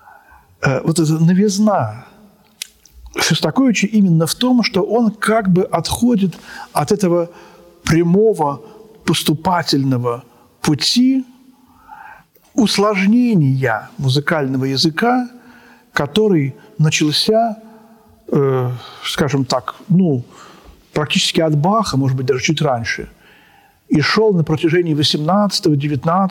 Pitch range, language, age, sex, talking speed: 165-220 Hz, Russian, 50-69, male, 85 wpm